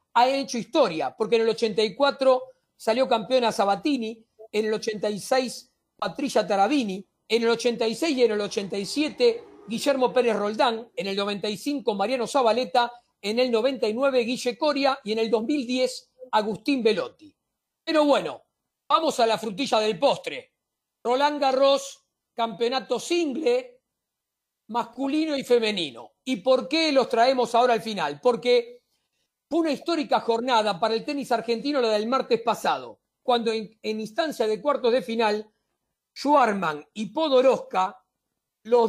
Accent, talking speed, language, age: Argentinian, 135 wpm, Spanish, 40-59